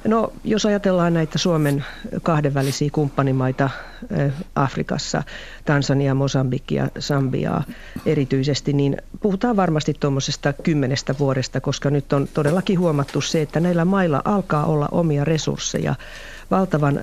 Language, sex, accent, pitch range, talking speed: Finnish, female, native, 140-180 Hz, 115 wpm